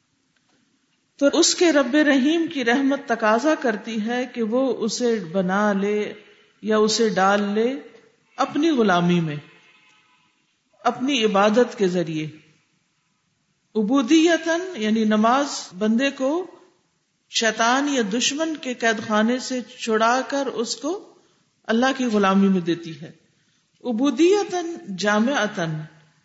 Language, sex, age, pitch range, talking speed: English, female, 50-69, 205-255 Hz, 115 wpm